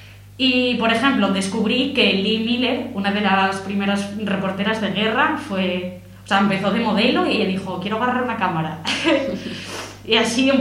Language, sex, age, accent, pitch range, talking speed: Spanish, female, 20-39, Spanish, 180-225 Hz, 165 wpm